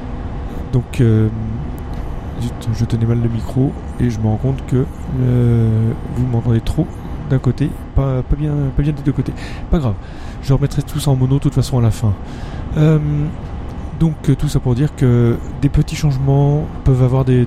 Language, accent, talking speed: French, French, 180 wpm